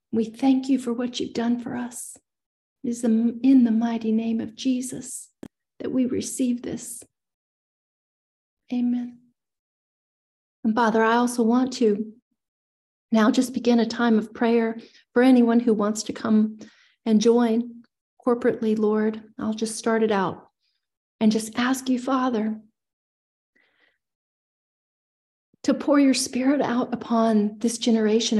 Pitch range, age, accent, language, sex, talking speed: 225-270 Hz, 40-59, American, English, female, 135 wpm